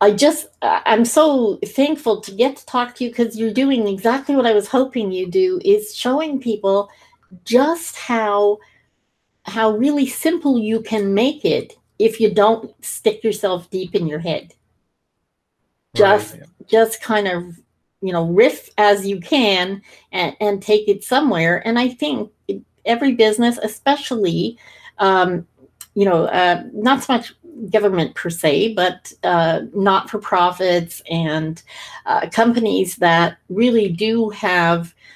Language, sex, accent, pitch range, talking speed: English, female, American, 195-250 Hz, 140 wpm